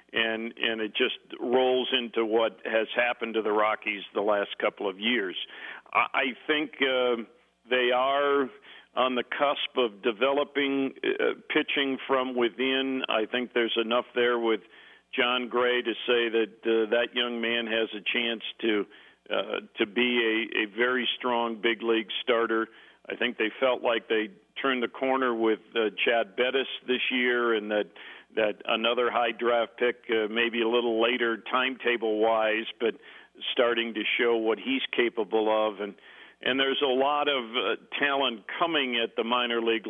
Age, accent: 50-69, American